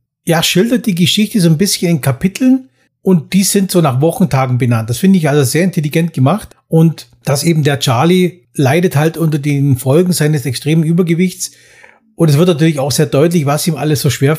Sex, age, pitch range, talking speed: male, 40-59, 145-175 Hz, 200 wpm